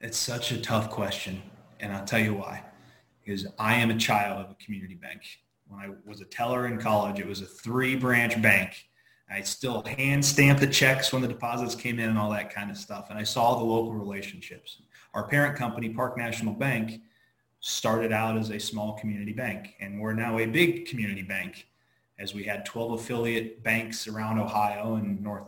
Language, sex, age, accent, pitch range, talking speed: English, male, 30-49, American, 100-120 Hz, 195 wpm